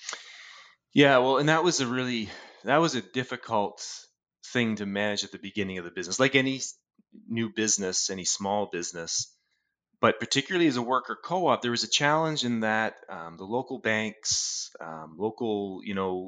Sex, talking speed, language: male, 175 wpm, English